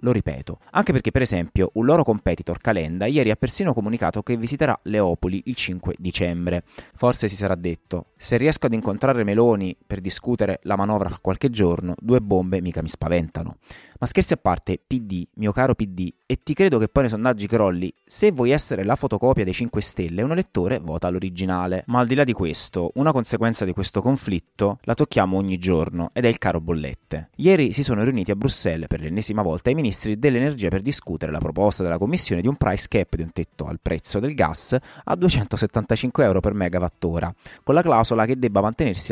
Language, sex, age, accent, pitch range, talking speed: Italian, male, 30-49, native, 90-125 Hz, 195 wpm